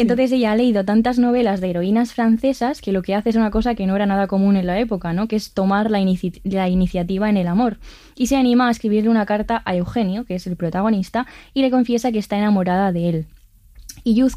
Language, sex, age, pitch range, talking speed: Spanish, female, 20-39, 190-235 Hz, 240 wpm